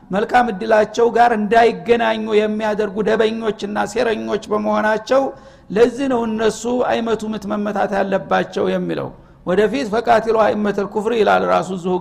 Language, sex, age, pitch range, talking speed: Amharic, male, 60-79, 210-245 Hz, 100 wpm